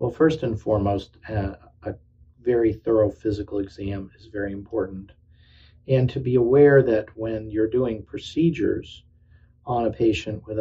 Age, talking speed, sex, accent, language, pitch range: 50-69, 145 wpm, male, American, English, 100-115 Hz